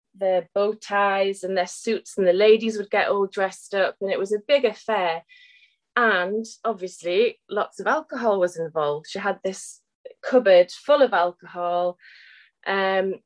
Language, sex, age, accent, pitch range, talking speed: English, female, 20-39, British, 190-275 Hz, 160 wpm